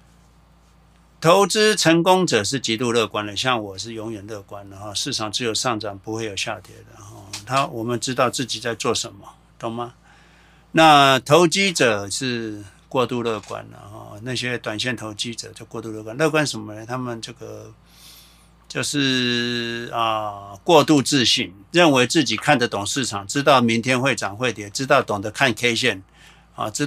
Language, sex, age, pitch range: Chinese, male, 60-79, 110-140 Hz